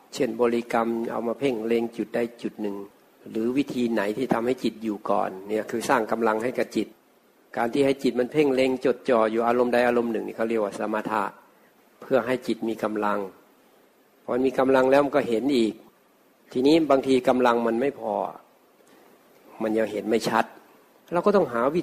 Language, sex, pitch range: Thai, male, 115-130 Hz